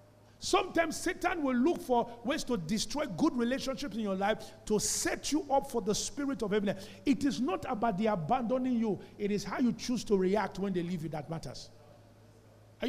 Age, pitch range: 50-69, 155-250 Hz